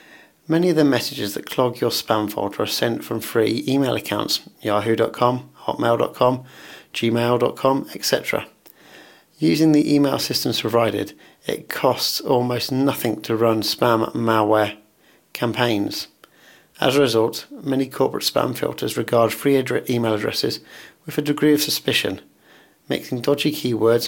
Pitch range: 115-140 Hz